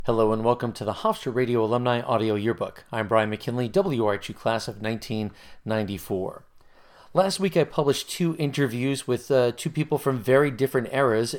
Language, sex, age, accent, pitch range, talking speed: English, male, 30-49, American, 115-145 Hz, 165 wpm